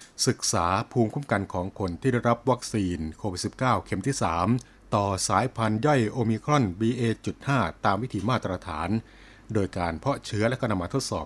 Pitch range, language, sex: 95-120 Hz, Thai, male